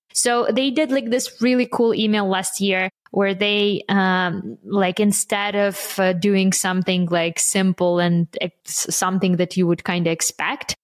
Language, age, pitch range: English, 20-39, 175-200 Hz